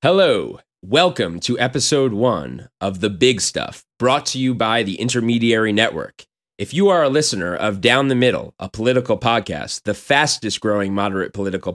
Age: 30-49